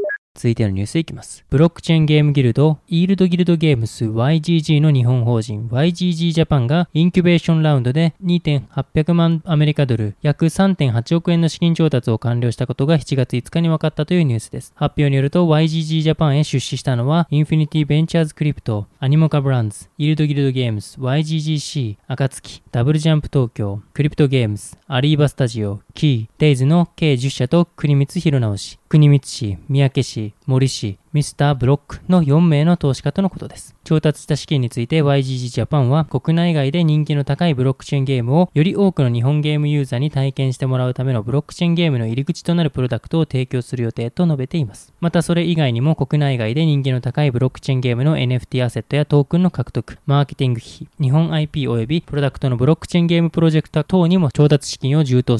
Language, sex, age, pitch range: Japanese, male, 20-39, 130-160 Hz